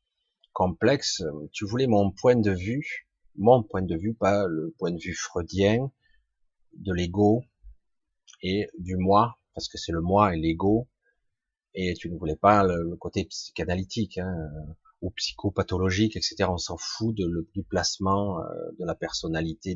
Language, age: French, 30-49